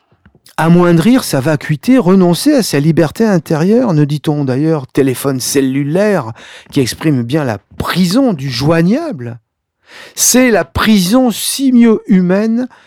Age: 50-69